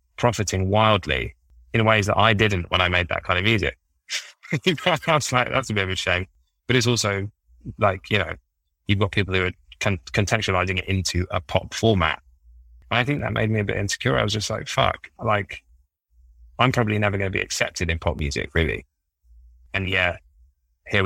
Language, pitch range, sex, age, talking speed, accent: English, 75-105 Hz, male, 20-39, 190 wpm, British